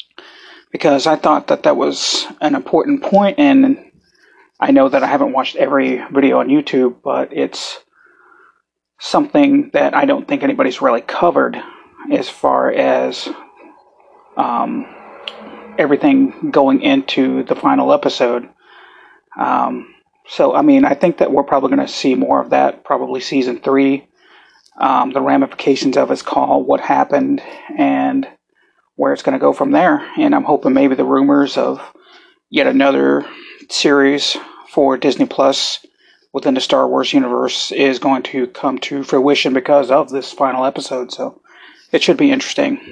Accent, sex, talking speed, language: American, male, 150 wpm, English